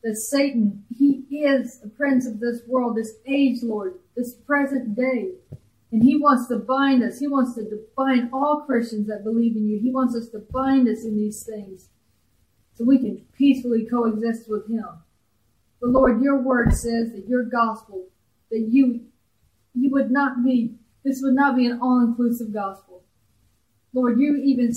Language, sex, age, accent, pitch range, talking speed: English, female, 40-59, American, 190-250 Hz, 170 wpm